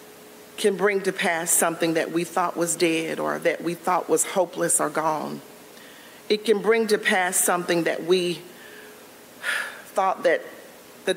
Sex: female